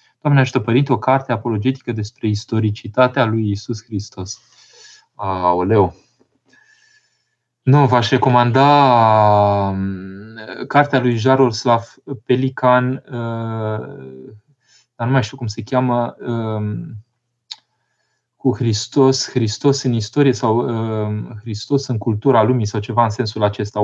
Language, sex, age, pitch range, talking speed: Romanian, male, 20-39, 105-130 Hz, 105 wpm